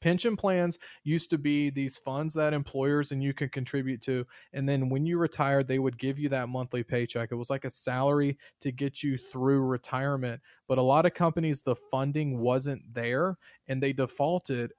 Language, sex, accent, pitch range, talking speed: English, male, American, 130-150 Hz, 195 wpm